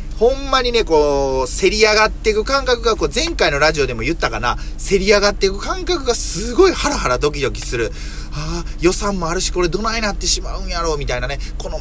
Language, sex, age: Japanese, male, 30-49